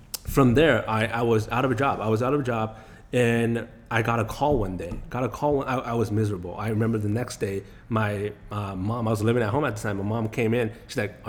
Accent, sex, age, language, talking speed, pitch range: American, male, 30-49, English, 270 wpm, 105-125 Hz